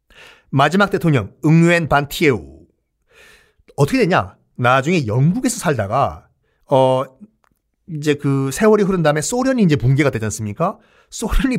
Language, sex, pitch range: Korean, male, 130-170 Hz